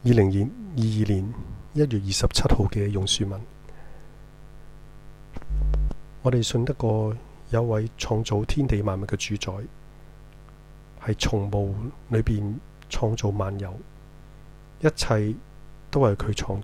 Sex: male